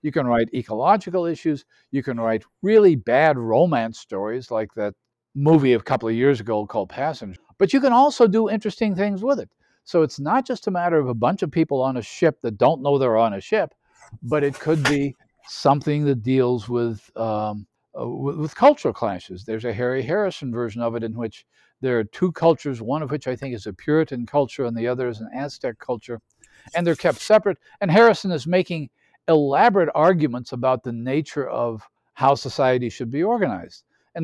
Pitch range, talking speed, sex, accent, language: 120-160 Hz, 200 wpm, male, American, English